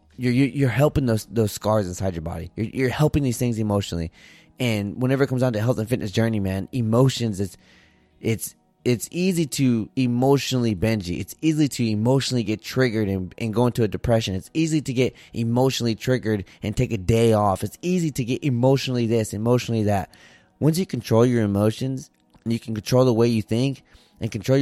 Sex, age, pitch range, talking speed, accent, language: male, 20-39, 105-130 Hz, 195 wpm, American, English